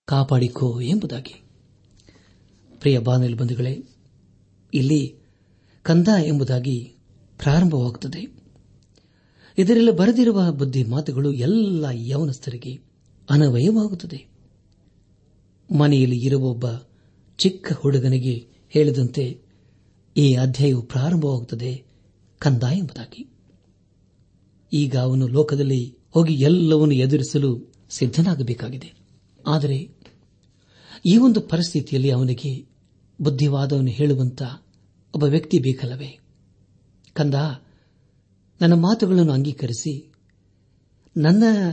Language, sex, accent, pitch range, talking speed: Kannada, male, native, 115-150 Hz, 70 wpm